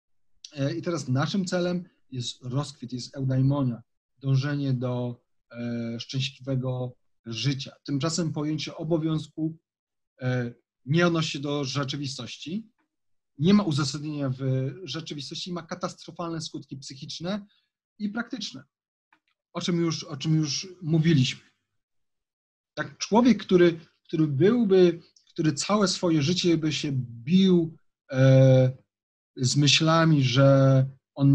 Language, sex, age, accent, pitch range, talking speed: Polish, male, 40-59, native, 125-160 Hz, 100 wpm